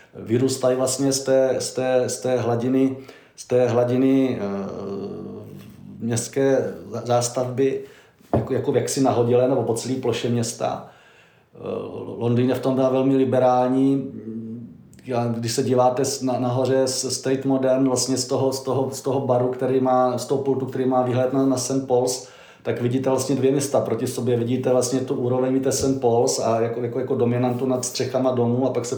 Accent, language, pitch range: native, Czech, 120-135 Hz